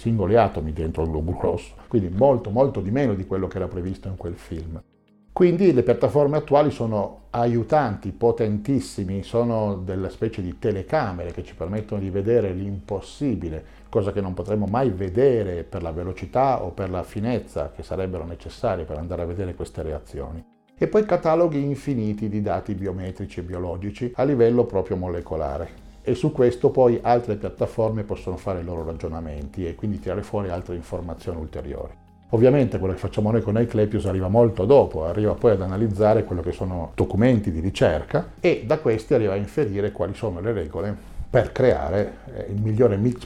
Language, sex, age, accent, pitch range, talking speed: Italian, male, 50-69, native, 90-115 Hz, 175 wpm